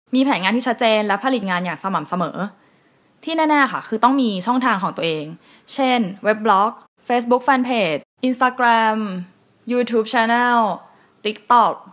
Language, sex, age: Thai, female, 10-29